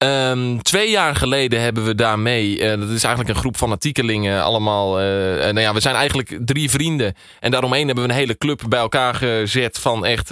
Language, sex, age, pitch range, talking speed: Dutch, male, 20-39, 115-140 Hz, 210 wpm